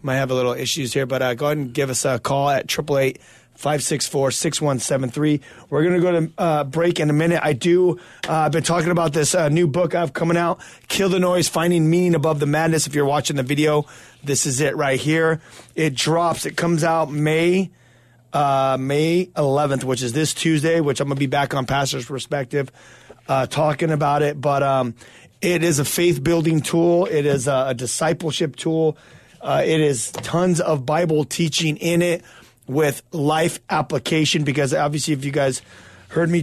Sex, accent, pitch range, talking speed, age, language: male, American, 135-165 Hz, 205 wpm, 30-49, English